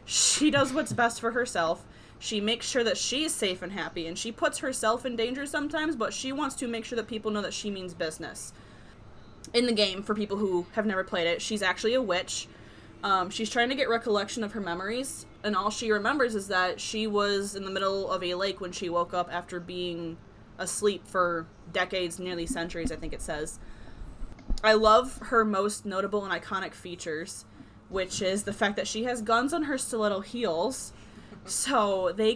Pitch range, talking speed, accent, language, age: 175-220 Hz, 200 wpm, American, English, 10-29